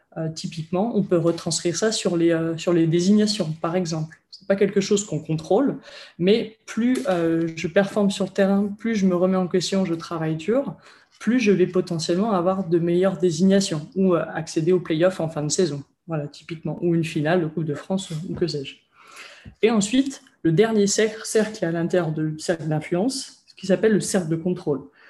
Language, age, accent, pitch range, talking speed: French, 20-39, French, 165-195 Hz, 205 wpm